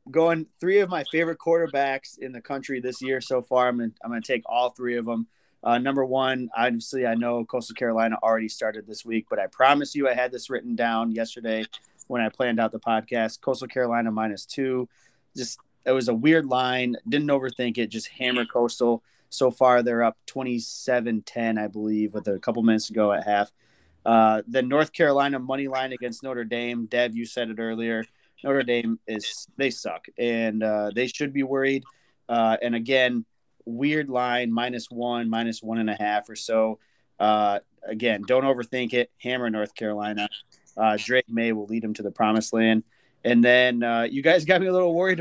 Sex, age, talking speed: male, 20-39, 195 wpm